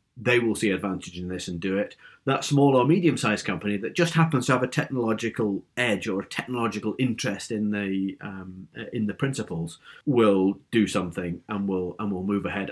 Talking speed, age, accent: 195 wpm, 40-59, British